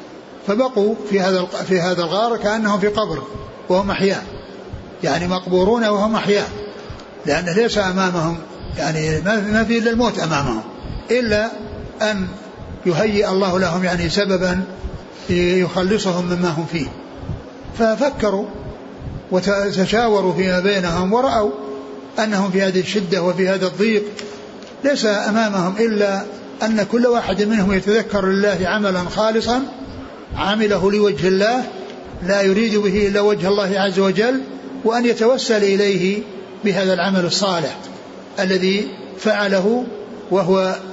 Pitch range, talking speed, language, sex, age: 185-215 Hz, 115 wpm, Arabic, male, 60-79